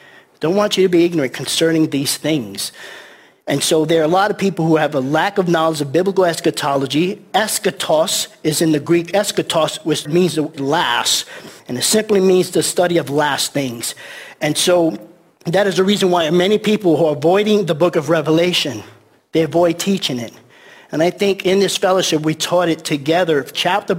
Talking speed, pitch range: 190 wpm, 160-205 Hz